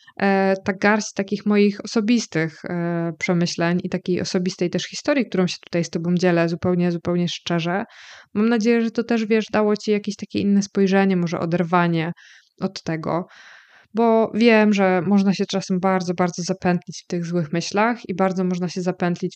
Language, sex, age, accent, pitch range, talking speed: Polish, female, 20-39, native, 170-205 Hz, 165 wpm